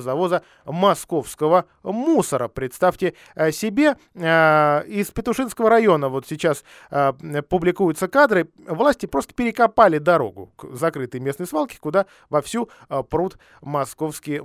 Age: 20-39